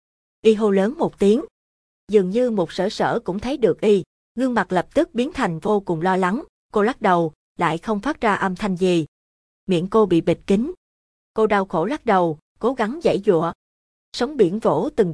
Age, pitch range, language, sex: 20-39, 180-220 Hz, Vietnamese, female